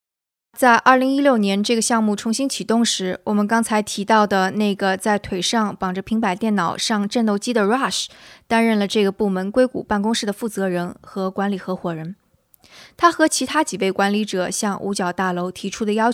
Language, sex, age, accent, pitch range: Chinese, female, 20-39, native, 195-235 Hz